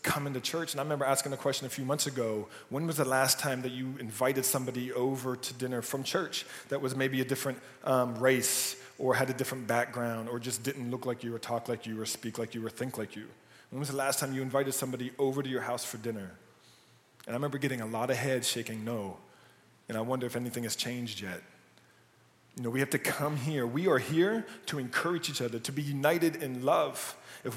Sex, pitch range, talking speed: male, 125-150 Hz, 235 wpm